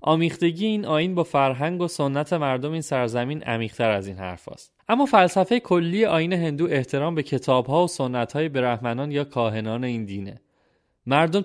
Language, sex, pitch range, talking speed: Persian, male, 120-160 Hz, 155 wpm